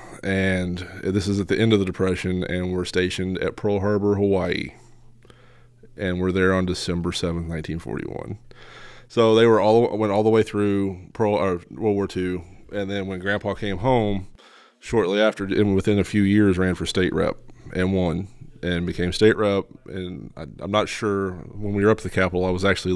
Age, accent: 30-49, American